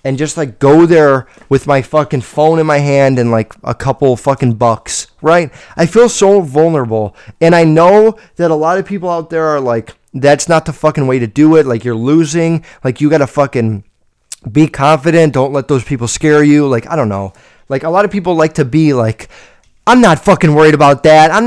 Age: 30-49